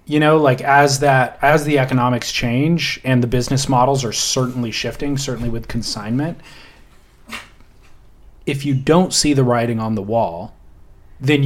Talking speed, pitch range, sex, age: 150 wpm, 115-140 Hz, male, 30-49